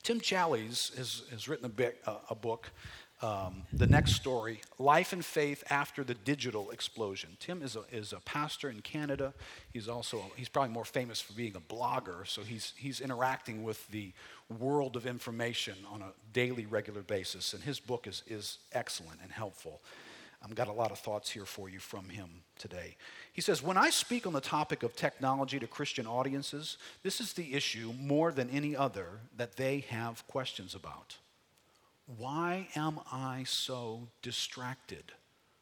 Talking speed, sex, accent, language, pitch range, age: 175 wpm, male, American, English, 110-150 Hz, 50-69